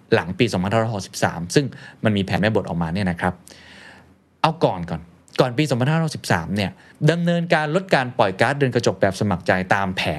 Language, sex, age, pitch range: Thai, male, 20-39, 95-145 Hz